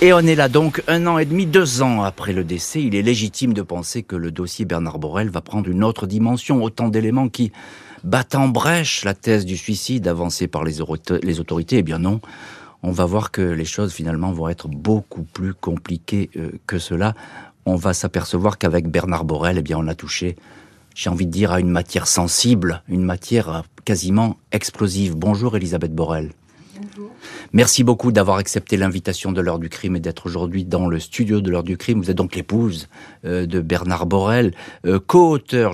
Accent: French